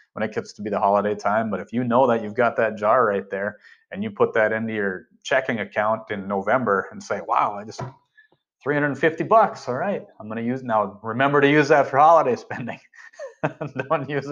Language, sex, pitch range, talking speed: English, male, 105-145 Hz, 215 wpm